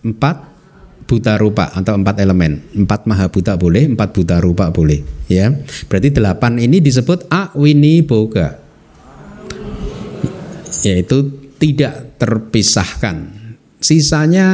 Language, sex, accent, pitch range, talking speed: Indonesian, male, native, 100-145 Hz, 100 wpm